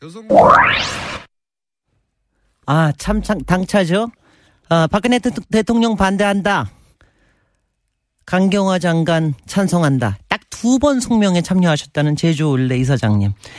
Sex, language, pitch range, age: male, Korean, 140-200 Hz, 40-59